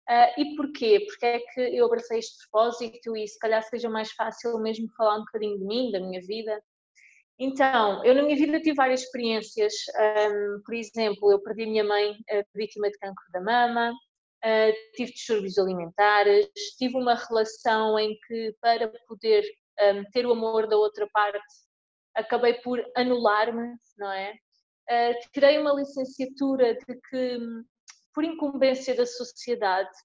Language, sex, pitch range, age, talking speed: Portuguese, female, 215-260 Hz, 20-39, 160 wpm